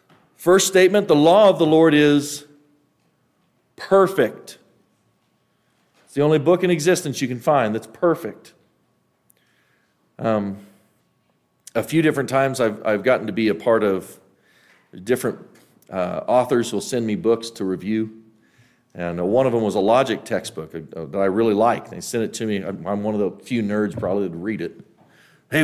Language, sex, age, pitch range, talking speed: English, male, 40-59, 100-150 Hz, 165 wpm